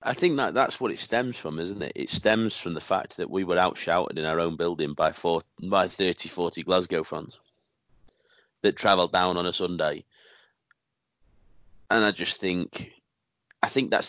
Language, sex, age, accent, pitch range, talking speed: English, male, 30-49, British, 90-105 Hz, 185 wpm